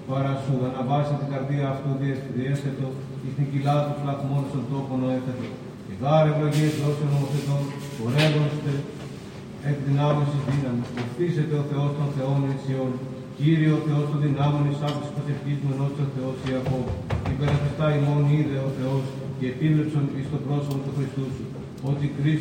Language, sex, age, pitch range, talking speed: Greek, male, 40-59, 135-145 Hz, 110 wpm